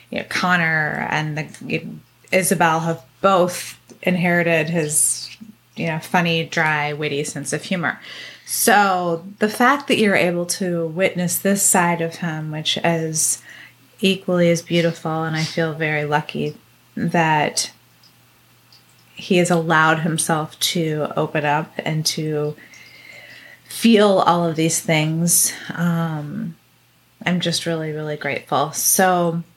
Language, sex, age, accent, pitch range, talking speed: English, female, 20-39, American, 160-185 Hz, 130 wpm